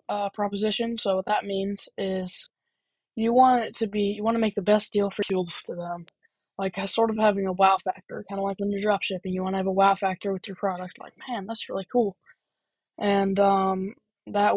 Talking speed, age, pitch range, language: 225 wpm, 10-29, 190-210 Hz, English